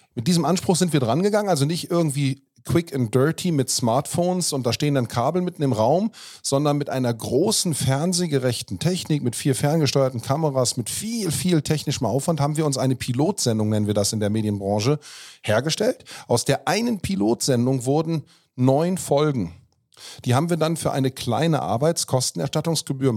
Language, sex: German, male